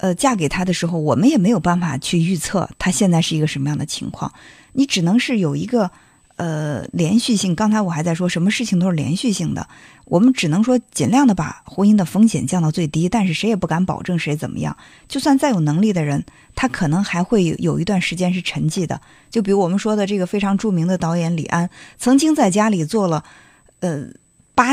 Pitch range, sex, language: 165-220 Hz, female, Chinese